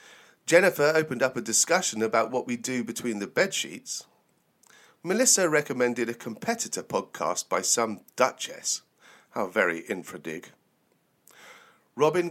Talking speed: 115 wpm